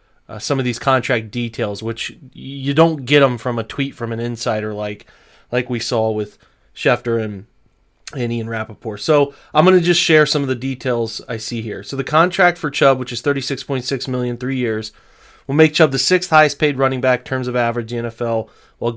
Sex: male